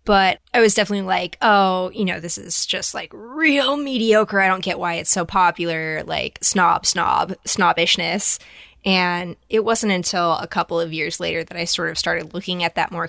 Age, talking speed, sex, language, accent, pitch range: 10-29, 195 wpm, female, English, American, 170-195 Hz